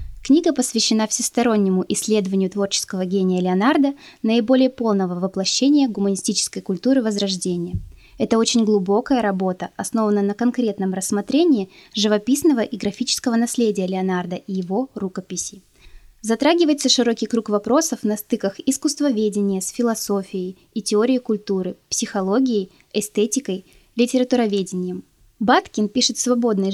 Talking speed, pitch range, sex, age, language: 110 wpm, 195-250 Hz, female, 20-39, Russian